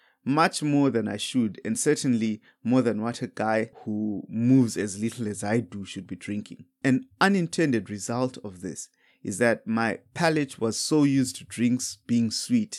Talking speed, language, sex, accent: 180 wpm, English, male, South African